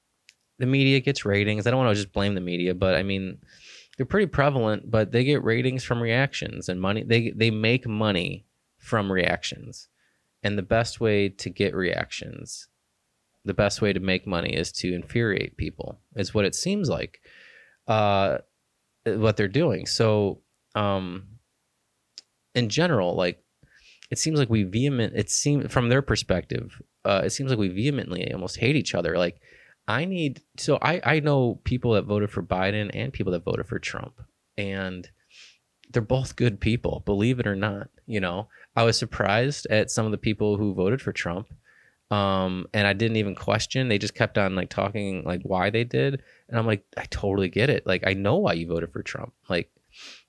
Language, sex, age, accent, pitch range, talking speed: English, male, 20-39, American, 100-120 Hz, 185 wpm